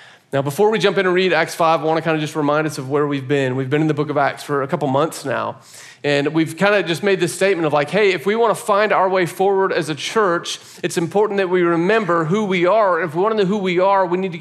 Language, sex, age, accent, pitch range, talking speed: English, male, 40-59, American, 155-195 Hz, 285 wpm